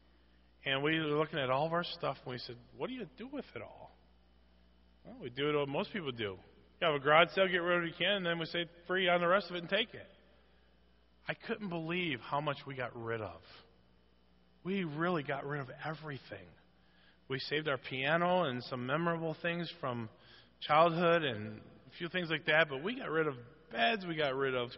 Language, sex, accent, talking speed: English, male, American, 225 wpm